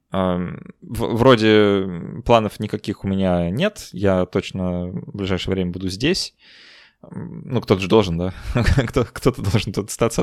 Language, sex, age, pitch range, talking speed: Russian, male, 20-39, 95-125 Hz, 130 wpm